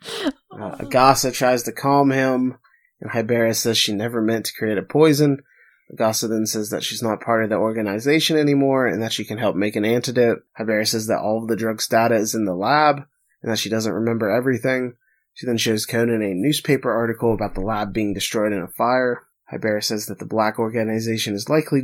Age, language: 20-39, English